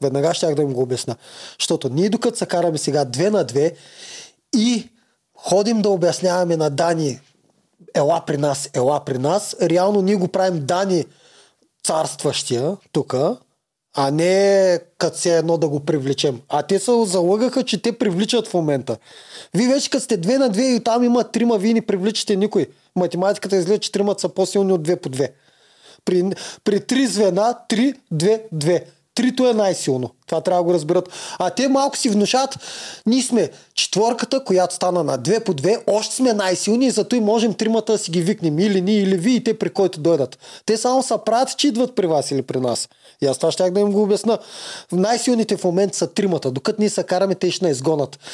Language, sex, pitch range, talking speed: Bulgarian, male, 160-215 Hz, 190 wpm